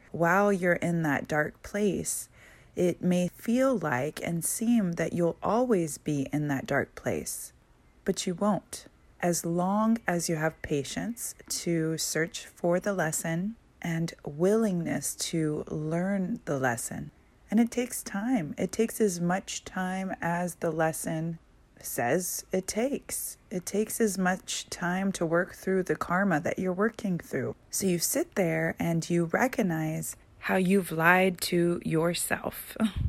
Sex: female